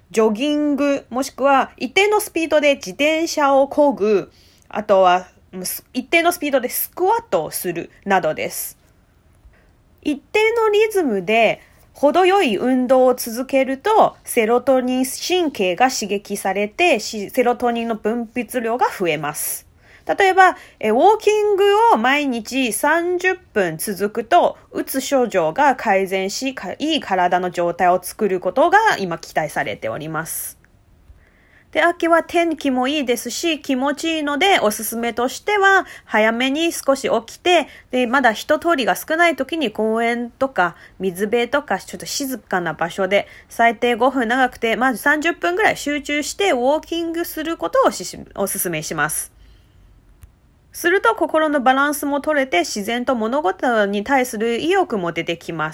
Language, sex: Japanese, female